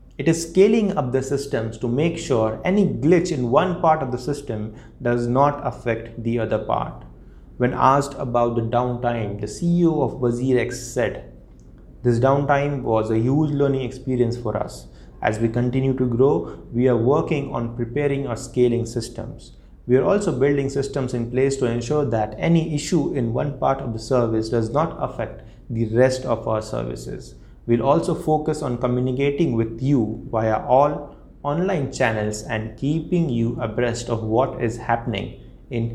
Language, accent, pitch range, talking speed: English, Indian, 110-140 Hz, 170 wpm